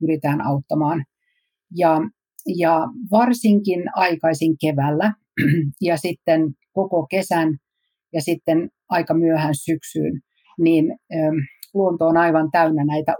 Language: Finnish